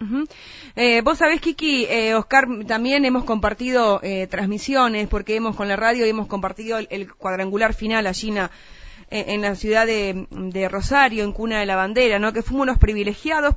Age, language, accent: 20-39, Spanish, Argentinian